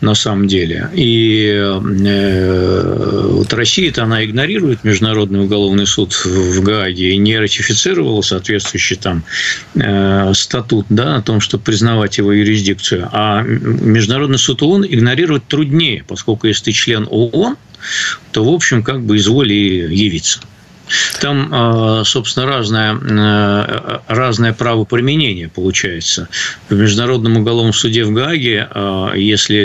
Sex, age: male, 50-69